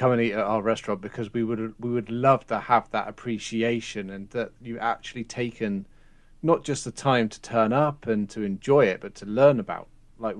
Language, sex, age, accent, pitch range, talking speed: English, male, 30-49, British, 105-130 Hz, 215 wpm